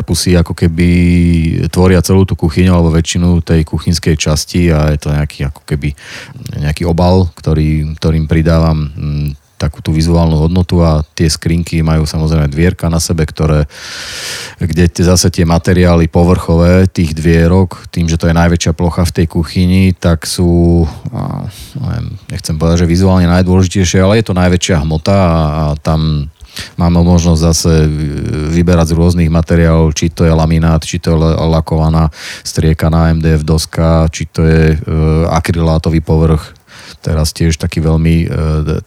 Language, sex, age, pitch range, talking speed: Slovak, male, 30-49, 80-90 Hz, 150 wpm